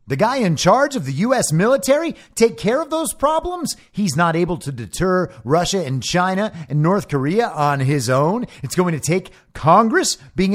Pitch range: 125-205 Hz